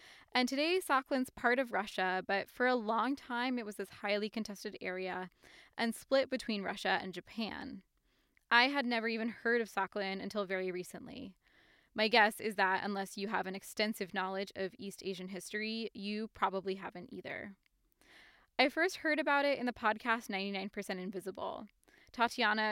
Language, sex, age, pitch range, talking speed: English, female, 20-39, 195-235 Hz, 165 wpm